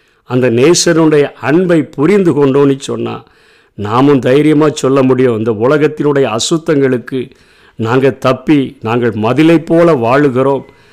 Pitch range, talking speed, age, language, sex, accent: 130-165 Hz, 105 wpm, 50-69, Tamil, male, native